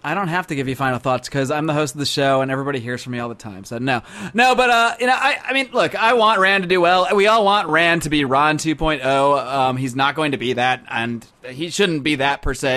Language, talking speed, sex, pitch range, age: English, 290 wpm, male, 150-190 Hz, 30-49